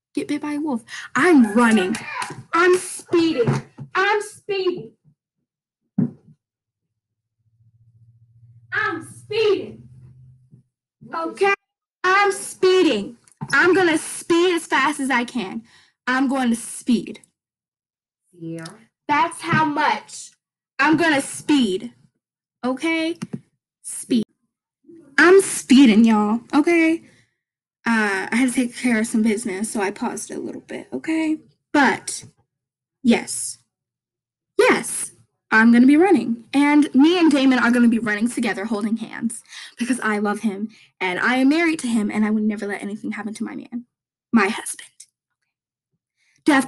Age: 10-29